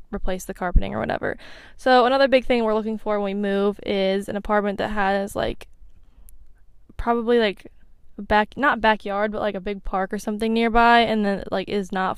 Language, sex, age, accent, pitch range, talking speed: English, female, 10-29, American, 200-245 Hz, 190 wpm